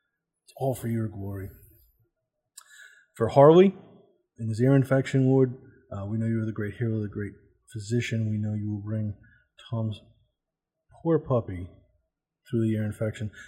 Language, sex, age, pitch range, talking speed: English, male, 30-49, 105-130 Hz, 145 wpm